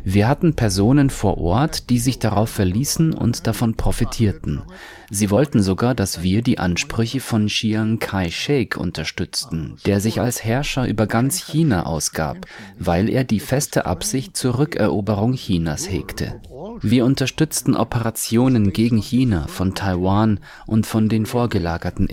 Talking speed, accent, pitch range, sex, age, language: 140 wpm, German, 95-125 Hz, male, 30-49, English